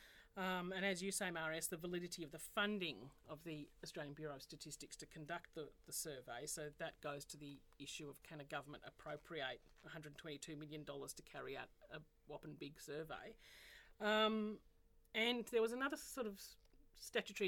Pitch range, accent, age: 155-190 Hz, Australian, 40-59